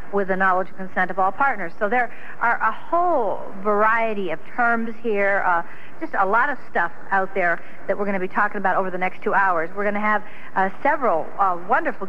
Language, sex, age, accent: English, female, 60-79, American